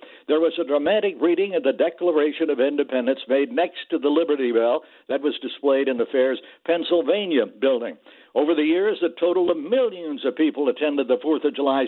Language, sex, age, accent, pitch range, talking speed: English, male, 60-79, American, 135-190 Hz, 190 wpm